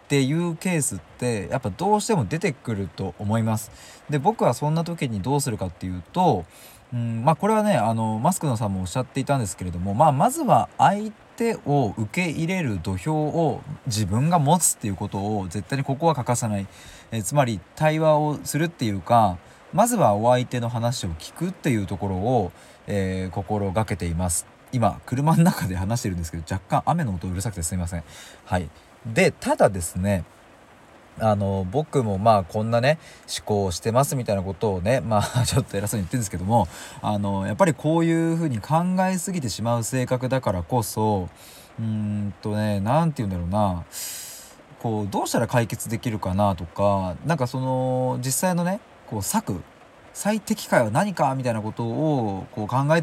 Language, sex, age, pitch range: Japanese, male, 20-39, 100-145 Hz